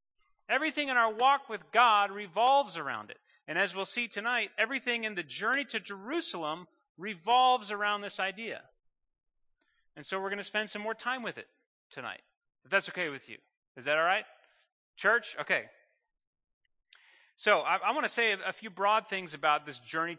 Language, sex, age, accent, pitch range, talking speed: English, male, 30-49, American, 155-240 Hz, 180 wpm